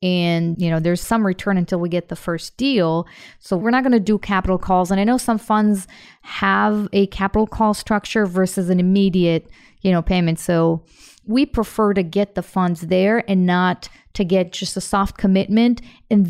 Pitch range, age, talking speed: 180-210 Hz, 30-49, 195 wpm